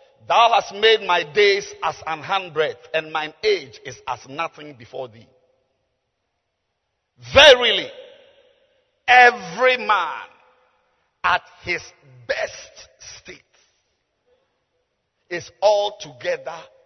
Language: English